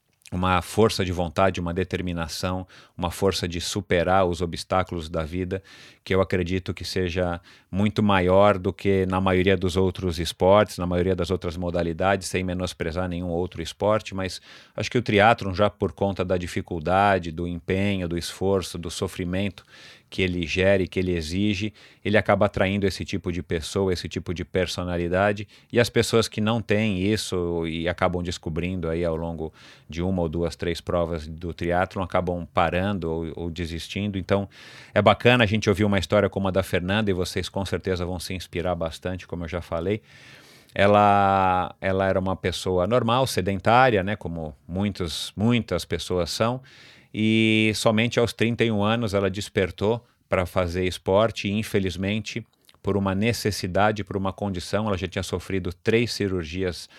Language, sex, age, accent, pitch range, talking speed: Portuguese, male, 40-59, Brazilian, 90-105 Hz, 165 wpm